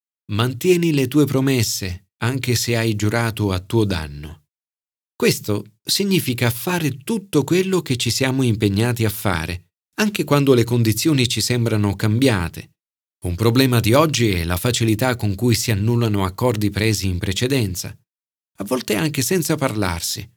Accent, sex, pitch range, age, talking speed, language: native, male, 100-140 Hz, 40-59, 145 wpm, Italian